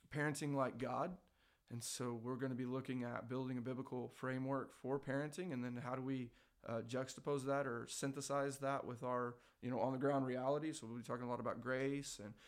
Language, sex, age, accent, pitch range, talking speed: English, male, 20-39, American, 125-145 Hz, 215 wpm